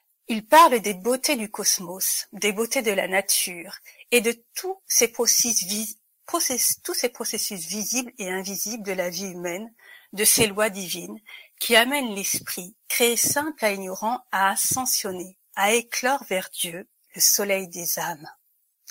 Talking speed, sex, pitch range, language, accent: 155 wpm, female, 190-250 Hz, French, French